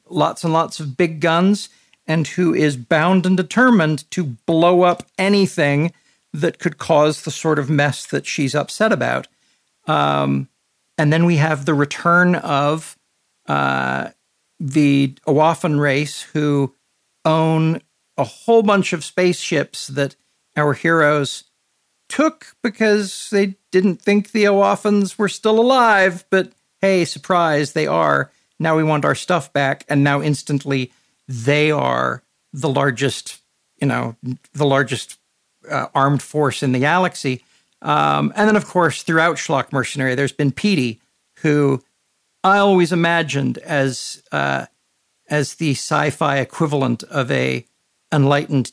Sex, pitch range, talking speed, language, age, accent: male, 135-175 Hz, 135 wpm, English, 50-69, American